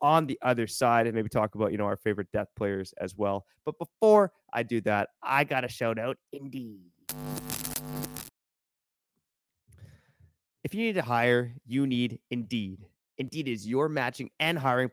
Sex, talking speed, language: male, 160 wpm, English